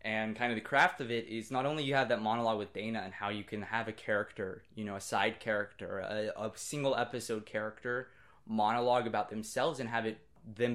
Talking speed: 225 wpm